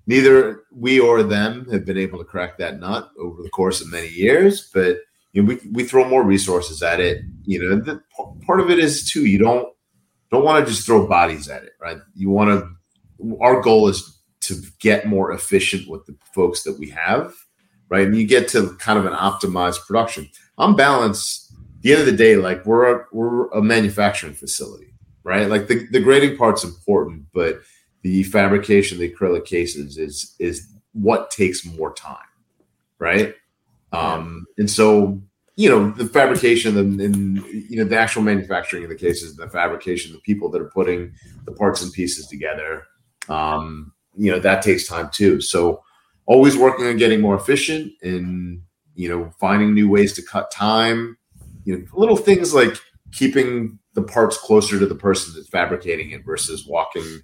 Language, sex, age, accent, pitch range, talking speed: English, male, 30-49, American, 90-115 Hz, 190 wpm